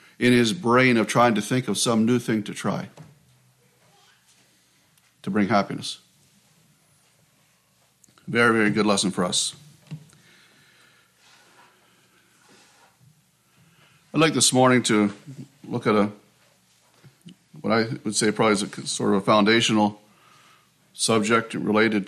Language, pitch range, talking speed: English, 105-135 Hz, 115 wpm